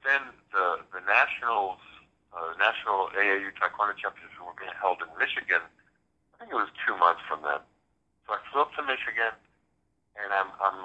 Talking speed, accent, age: 175 wpm, American, 60-79